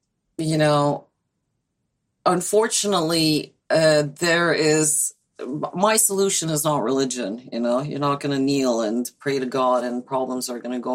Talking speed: 155 wpm